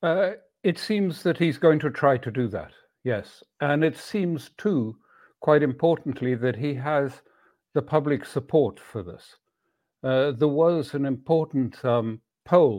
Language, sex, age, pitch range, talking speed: English, male, 60-79, 125-150 Hz, 155 wpm